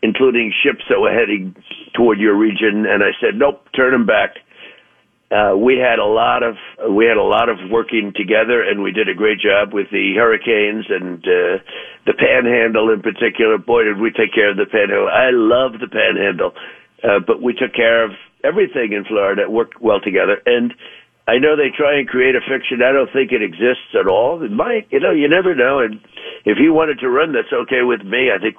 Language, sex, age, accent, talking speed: English, male, 50-69, American, 215 wpm